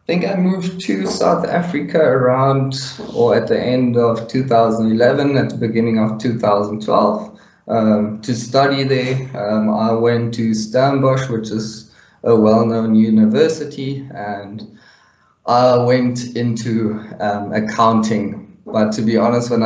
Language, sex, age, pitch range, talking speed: English, male, 20-39, 110-125 Hz, 135 wpm